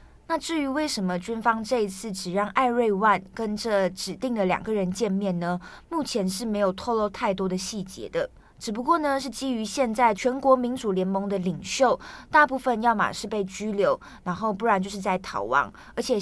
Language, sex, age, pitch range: Chinese, female, 20-39, 190-250 Hz